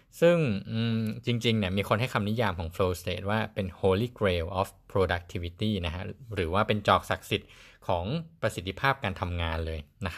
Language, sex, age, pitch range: Thai, male, 20-39, 90-120 Hz